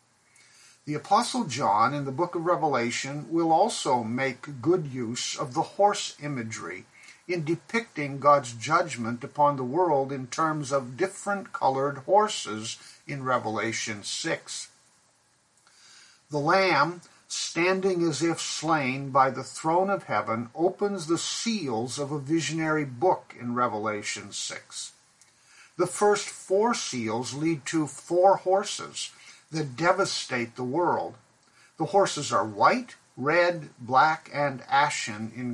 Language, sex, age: English, male, 50-69